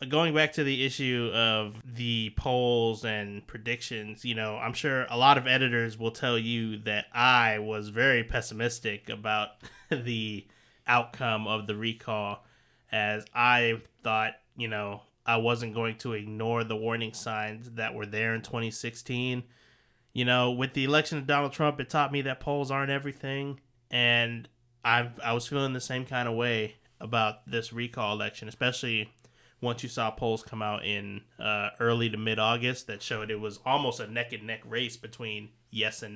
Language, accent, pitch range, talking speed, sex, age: English, American, 110-135 Hz, 175 wpm, male, 20-39